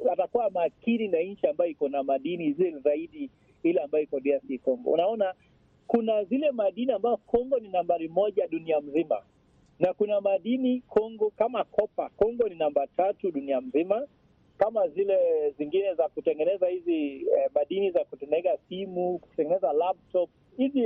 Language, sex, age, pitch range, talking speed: Swahili, male, 40-59, 175-255 Hz, 150 wpm